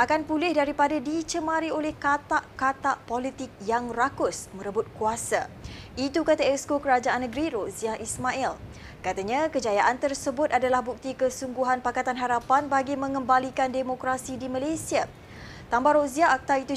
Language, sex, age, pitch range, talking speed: Malay, female, 20-39, 250-285 Hz, 125 wpm